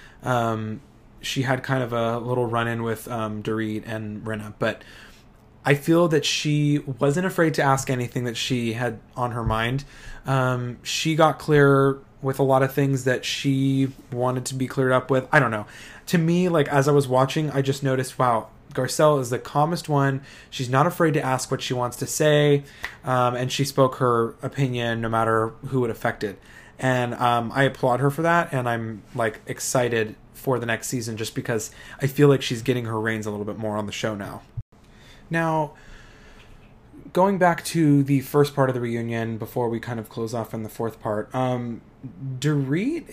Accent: American